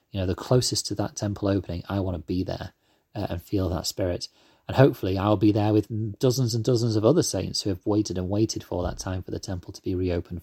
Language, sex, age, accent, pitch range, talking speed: English, male, 30-49, British, 90-110 Hz, 255 wpm